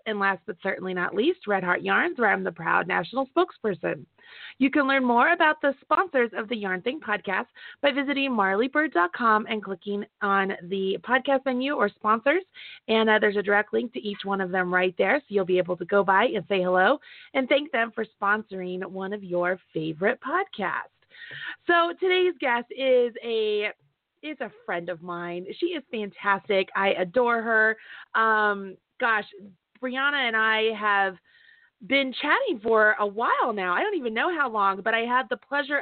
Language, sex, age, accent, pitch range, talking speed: English, female, 30-49, American, 195-270 Hz, 185 wpm